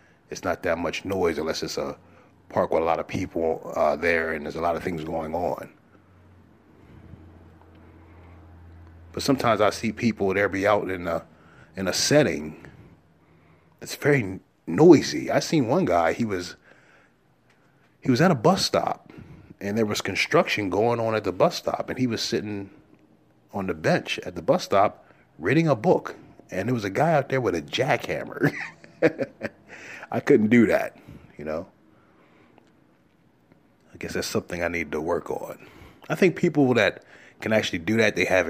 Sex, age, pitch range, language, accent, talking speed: male, 30-49, 85-115 Hz, English, American, 175 wpm